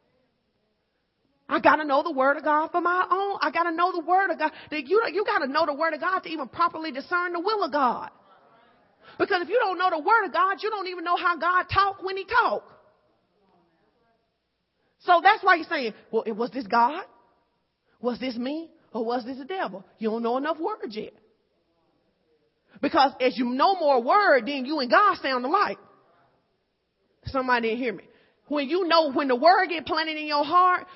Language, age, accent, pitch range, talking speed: English, 30-49, American, 230-350 Hz, 195 wpm